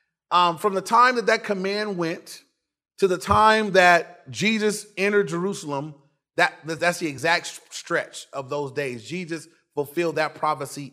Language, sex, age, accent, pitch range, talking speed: English, male, 30-49, American, 155-215 Hz, 150 wpm